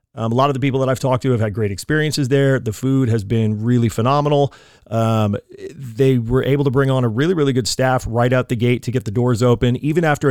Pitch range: 120-135 Hz